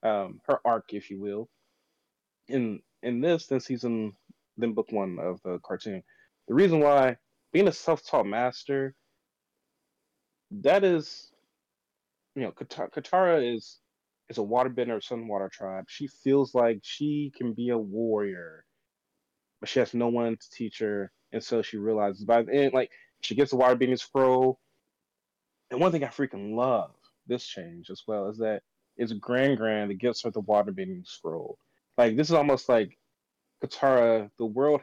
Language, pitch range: English, 105-135 Hz